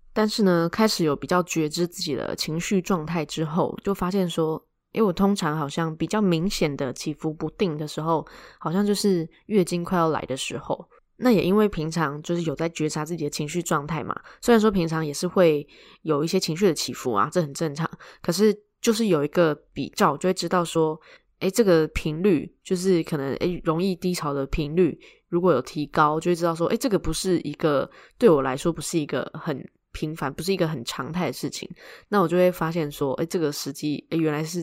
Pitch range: 155-190 Hz